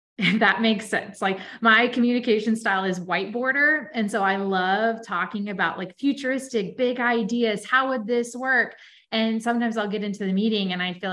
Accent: American